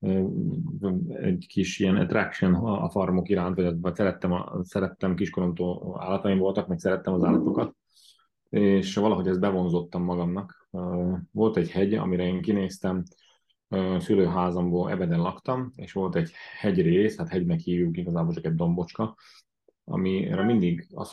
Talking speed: 130 wpm